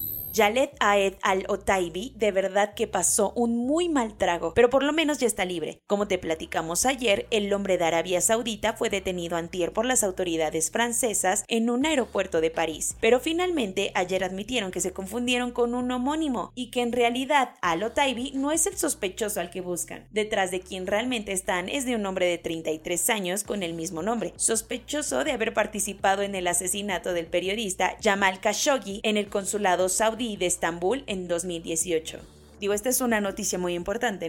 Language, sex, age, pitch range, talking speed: Spanish, female, 20-39, 185-240 Hz, 180 wpm